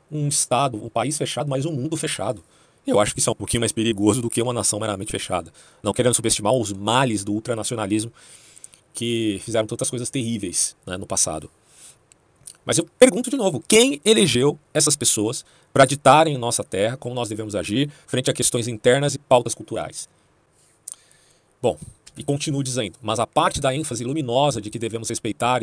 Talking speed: 185 wpm